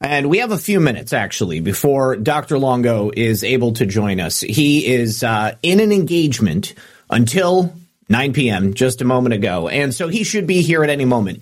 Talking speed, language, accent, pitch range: 195 wpm, English, American, 120-165 Hz